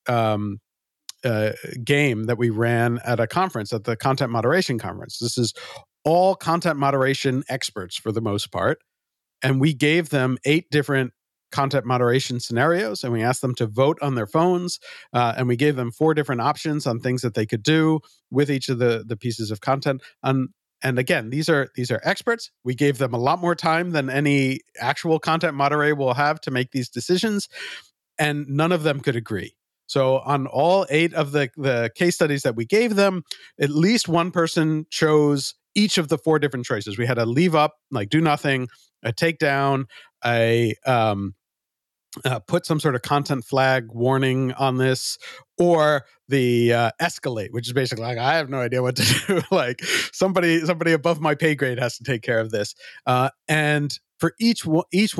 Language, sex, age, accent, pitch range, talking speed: English, male, 50-69, American, 120-160 Hz, 190 wpm